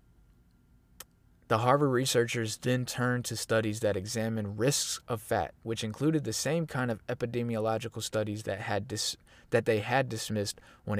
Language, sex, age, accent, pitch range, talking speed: English, male, 20-39, American, 105-125 Hz, 155 wpm